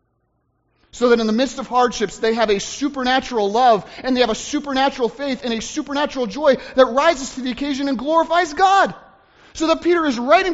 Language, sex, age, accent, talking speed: English, male, 30-49, American, 200 wpm